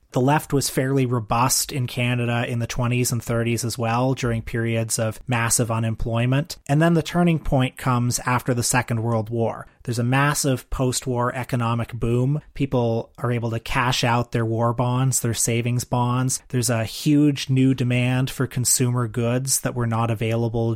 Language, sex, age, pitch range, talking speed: English, male, 30-49, 115-130 Hz, 175 wpm